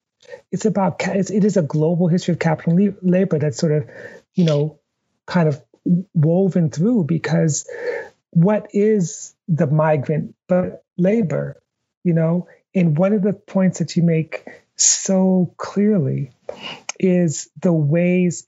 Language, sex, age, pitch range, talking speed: English, male, 40-59, 155-185 Hz, 135 wpm